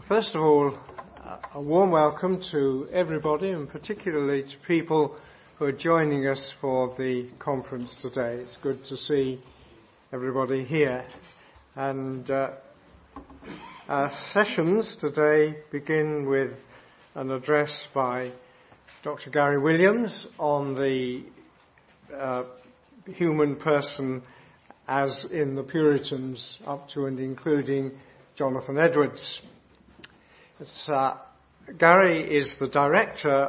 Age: 50-69